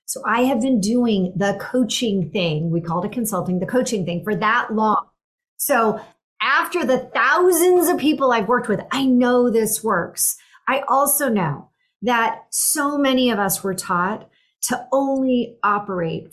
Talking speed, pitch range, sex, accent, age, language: 165 wpm, 185-255 Hz, female, American, 40-59, English